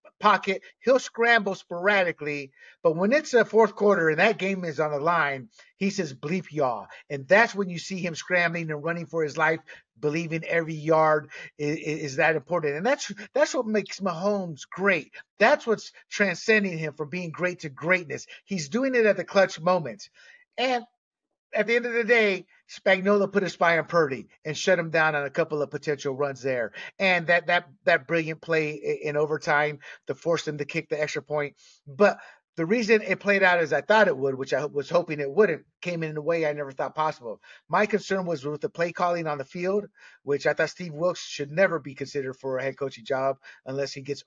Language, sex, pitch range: English, male, 150-200 Hz